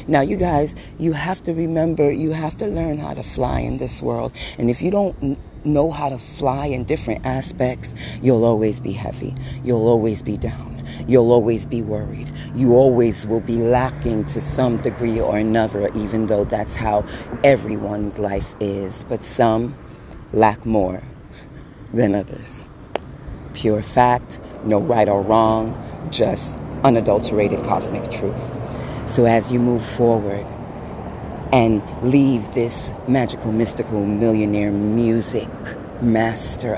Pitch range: 105-130 Hz